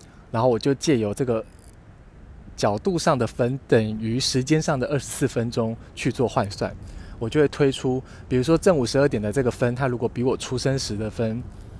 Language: Chinese